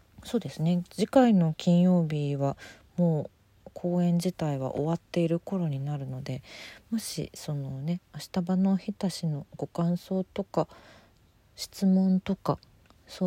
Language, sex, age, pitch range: Japanese, female, 40-59, 135-170 Hz